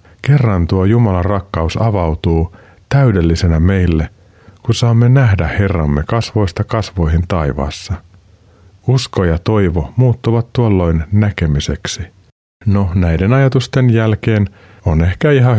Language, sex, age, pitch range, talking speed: Finnish, male, 50-69, 90-110 Hz, 105 wpm